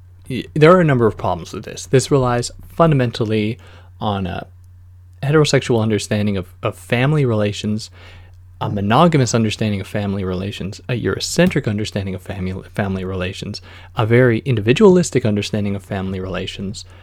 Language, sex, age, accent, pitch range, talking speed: English, male, 20-39, American, 90-120 Hz, 135 wpm